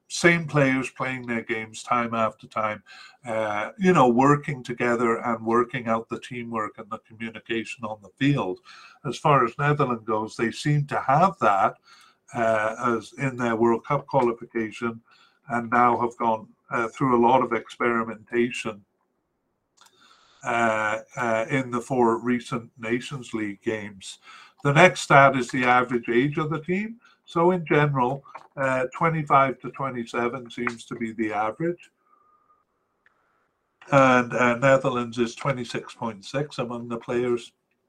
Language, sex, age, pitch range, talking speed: English, male, 50-69, 115-140 Hz, 145 wpm